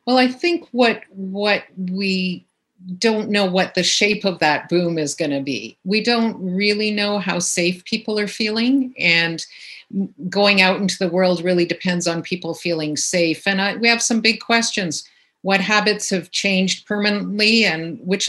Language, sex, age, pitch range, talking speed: English, female, 50-69, 170-200 Hz, 175 wpm